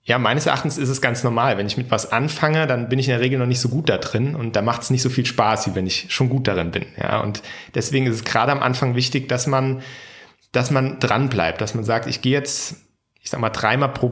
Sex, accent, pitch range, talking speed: male, German, 115-130 Hz, 275 wpm